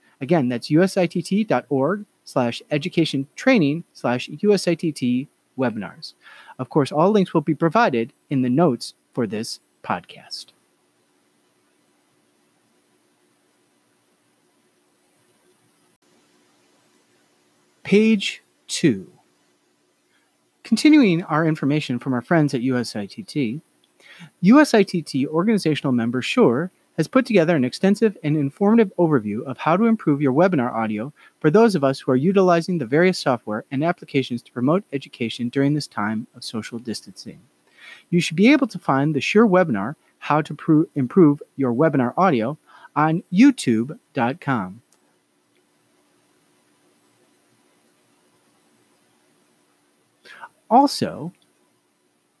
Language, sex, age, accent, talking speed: English, male, 30-49, American, 95 wpm